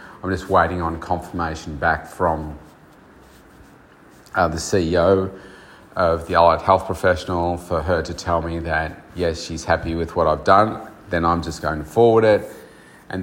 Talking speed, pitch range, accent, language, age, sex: 165 wpm, 80-95 Hz, Australian, English, 30-49, male